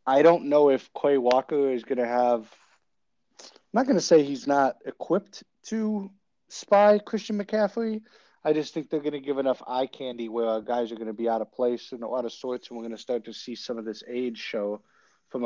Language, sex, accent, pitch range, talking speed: English, male, American, 120-150 Hz, 230 wpm